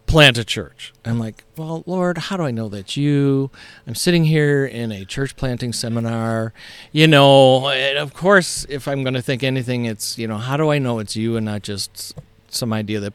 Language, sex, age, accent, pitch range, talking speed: English, male, 40-59, American, 105-130 Hz, 215 wpm